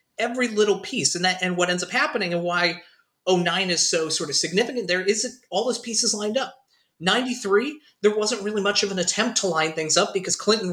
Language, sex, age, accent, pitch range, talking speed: English, male, 30-49, American, 170-215 Hz, 220 wpm